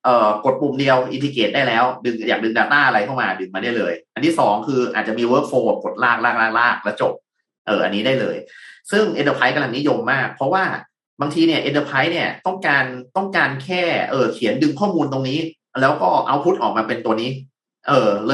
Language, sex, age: Thai, male, 30-49